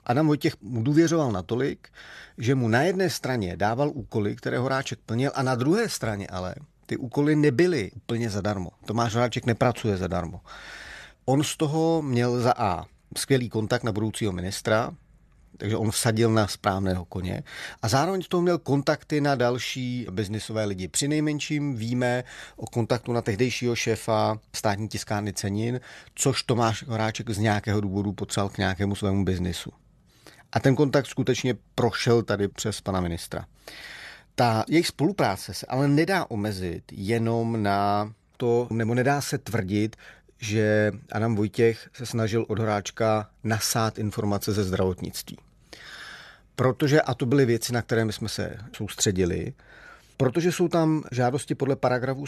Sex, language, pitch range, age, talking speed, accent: male, Czech, 105-135 Hz, 40-59, 145 wpm, native